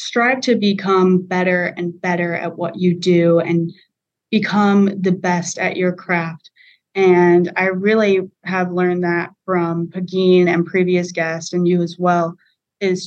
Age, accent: 20-39, American